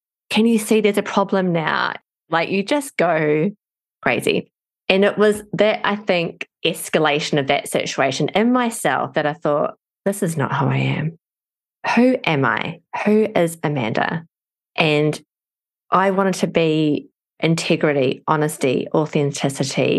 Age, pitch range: 20-39, 150-195 Hz